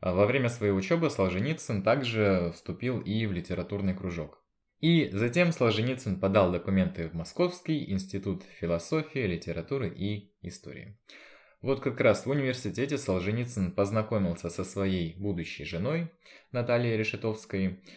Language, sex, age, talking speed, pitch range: Russian, male, 20-39, 120 wpm, 85-120 Hz